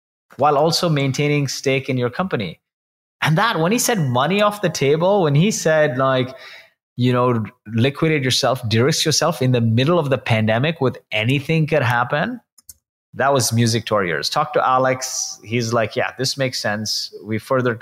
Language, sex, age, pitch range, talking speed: English, male, 20-39, 100-135 Hz, 180 wpm